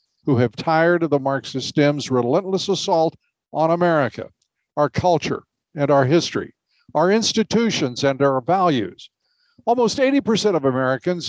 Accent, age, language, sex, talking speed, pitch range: American, 60-79, English, male, 135 wpm, 145-195 Hz